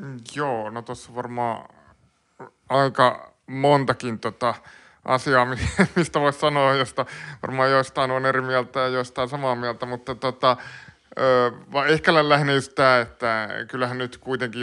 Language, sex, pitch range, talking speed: Finnish, male, 115-130 Hz, 125 wpm